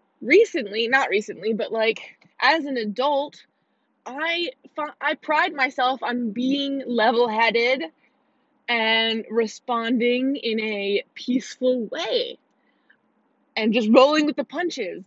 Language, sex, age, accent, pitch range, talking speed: English, female, 20-39, American, 225-290 Hz, 115 wpm